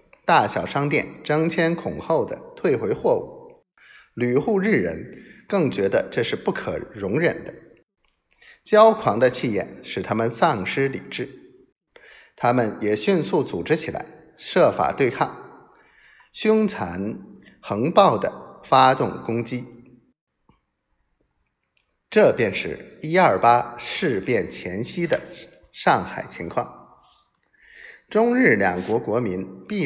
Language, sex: Chinese, male